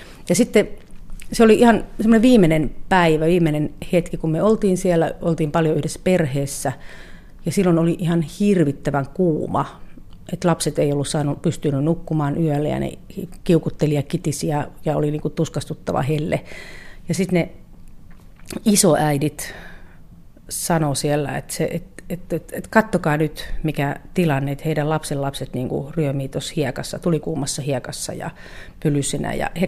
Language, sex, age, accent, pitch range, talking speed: Finnish, female, 40-59, native, 145-175 Hz, 155 wpm